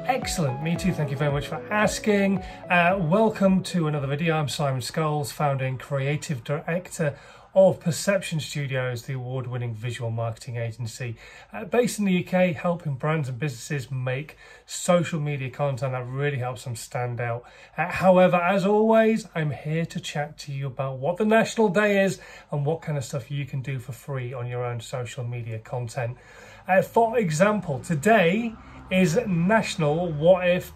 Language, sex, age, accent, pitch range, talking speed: English, male, 30-49, British, 135-180 Hz, 170 wpm